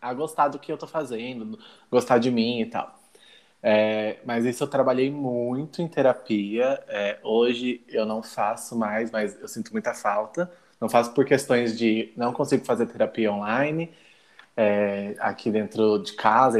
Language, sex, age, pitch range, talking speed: Portuguese, male, 20-39, 115-140 Hz, 165 wpm